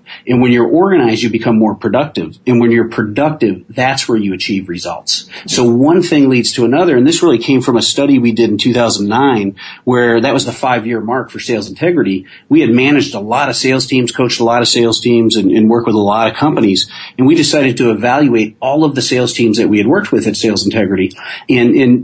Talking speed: 230 wpm